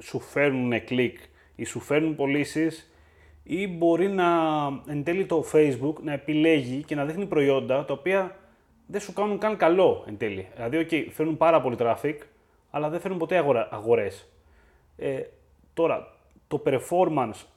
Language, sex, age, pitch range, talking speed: Greek, male, 30-49, 115-165 Hz, 155 wpm